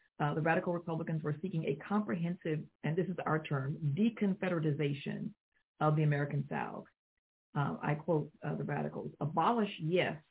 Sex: female